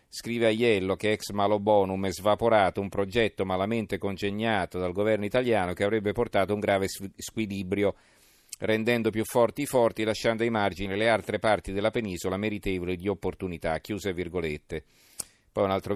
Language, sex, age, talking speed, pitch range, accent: Italian, male, 40-59, 160 wpm, 100-115 Hz, native